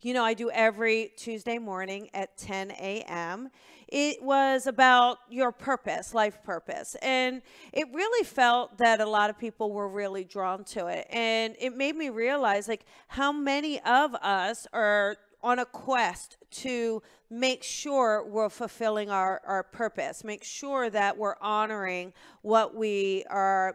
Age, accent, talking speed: 40-59, American, 155 wpm